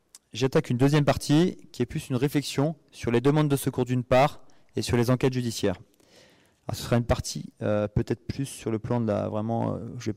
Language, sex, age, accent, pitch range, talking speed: French, male, 20-39, French, 115-145 Hz, 230 wpm